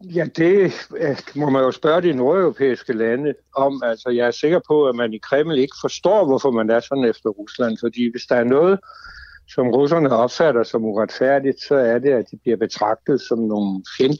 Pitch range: 120-170 Hz